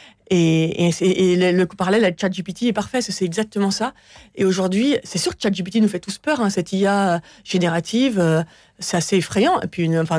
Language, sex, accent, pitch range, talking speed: French, female, French, 175-210 Hz, 205 wpm